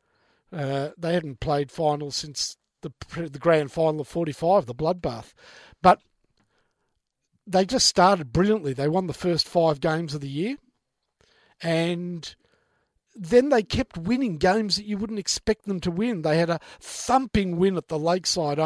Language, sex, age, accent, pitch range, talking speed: English, male, 50-69, Australian, 155-200 Hz, 160 wpm